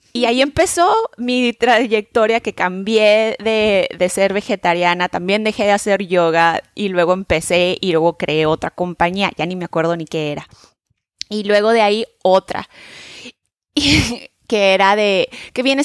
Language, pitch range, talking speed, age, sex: Spanish, 190-230 Hz, 155 wpm, 20-39, female